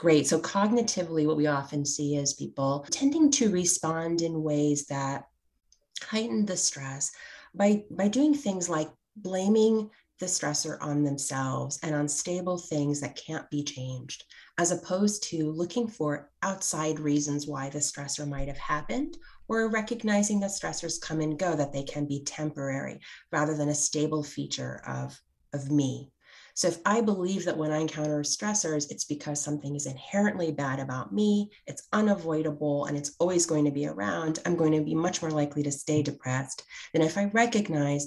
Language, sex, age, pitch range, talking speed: English, female, 30-49, 145-180 Hz, 170 wpm